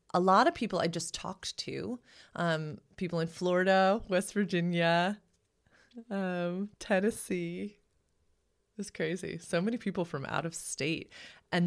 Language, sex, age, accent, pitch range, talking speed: English, female, 30-49, American, 160-195 Hz, 135 wpm